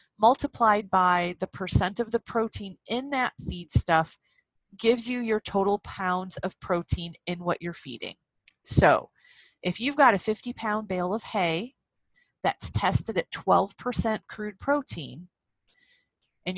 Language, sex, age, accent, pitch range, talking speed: English, female, 30-49, American, 175-225 Hz, 140 wpm